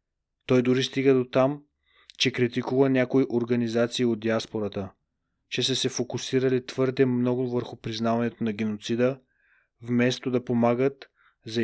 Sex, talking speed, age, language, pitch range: male, 130 wpm, 30-49, Bulgarian, 115-135 Hz